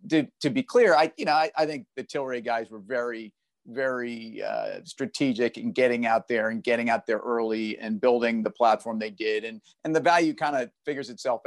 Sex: male